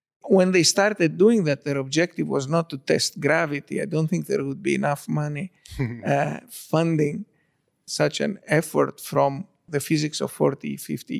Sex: male